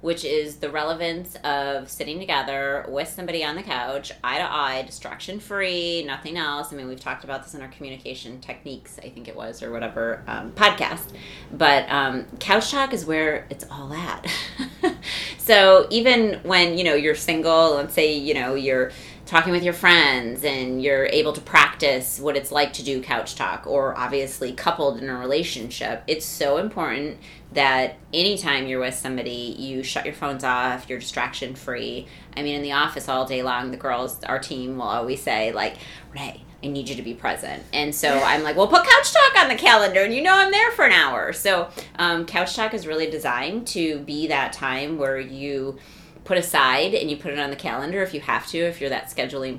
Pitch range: 135-175 Hz